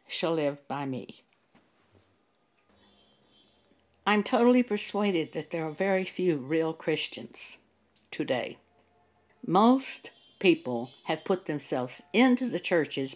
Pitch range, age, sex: 150-235 Hz, 60-79, female